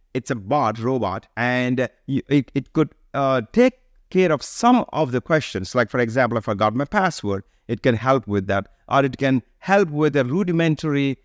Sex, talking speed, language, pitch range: male, 185 wpm, English, 125-160 Hz